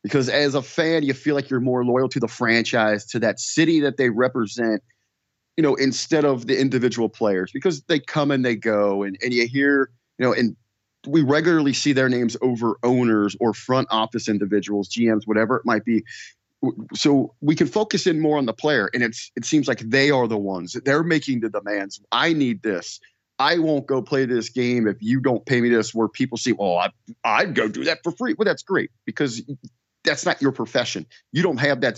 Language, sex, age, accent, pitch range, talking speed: English, male, 30-49, American, 110-140 Hz, 220 wpm